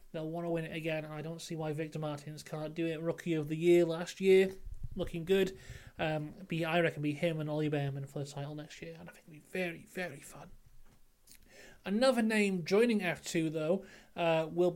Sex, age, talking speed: male, 30-49, 210 wpm